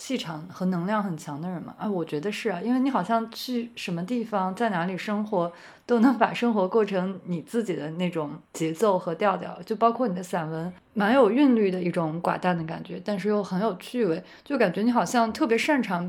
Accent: native